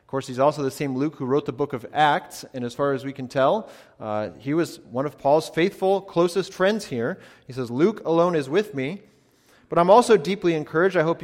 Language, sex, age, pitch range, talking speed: English, male, 30-49, 125-165 Hz, 235 wpm